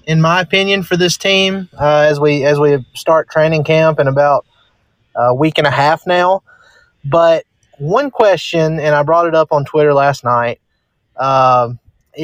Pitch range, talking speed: 130-155 Hz, 170 wpm